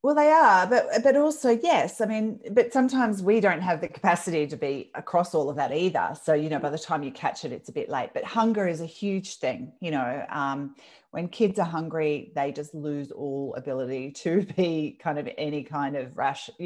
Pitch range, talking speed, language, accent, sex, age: 140-180 Hz, 225 wpm, English, Australian, female, 30-49